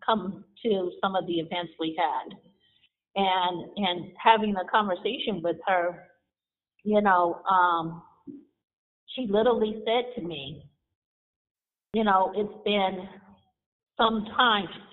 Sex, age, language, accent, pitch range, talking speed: female, 50-69, English, American, 175-220 Hz, 115 wpm